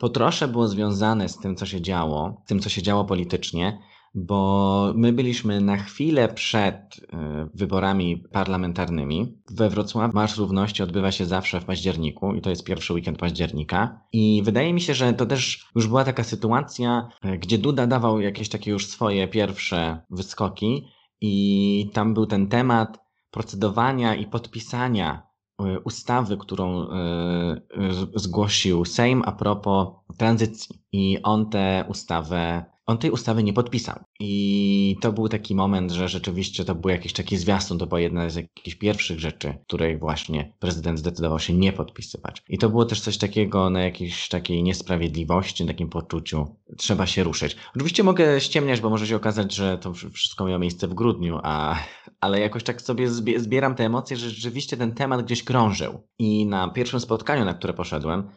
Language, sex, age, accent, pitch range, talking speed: Polish, male, 20-39, native, 90-110 Hz, 160 wpm